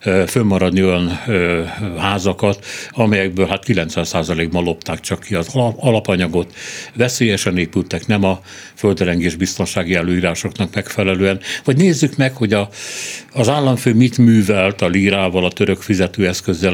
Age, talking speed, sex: 60-79, 120 wpm, male